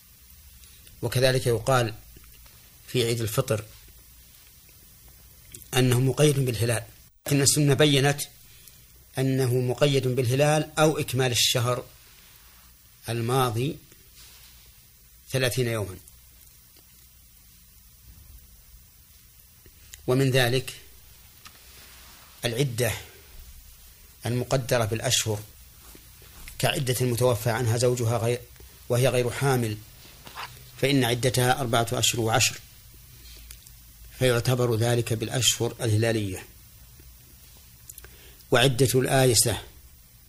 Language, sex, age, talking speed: Arabic, male, 40-59, 65 wpm